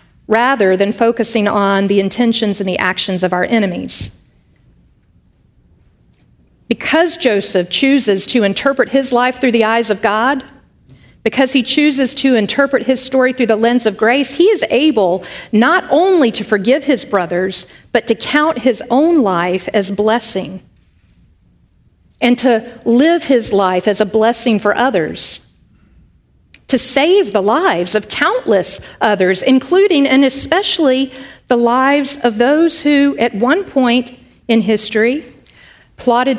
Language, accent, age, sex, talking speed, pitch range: English, American, 50-69, female, 140 wpm, 205-270 Hz